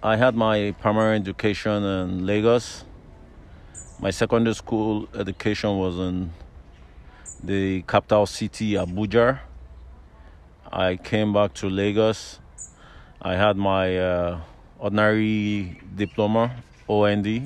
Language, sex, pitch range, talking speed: English, male, 90-110 Hz, 100 wpm